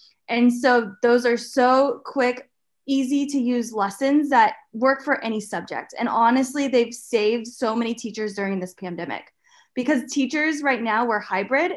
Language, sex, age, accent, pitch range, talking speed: English, female, 20-39, American, 225-275 Hz, 160 wpm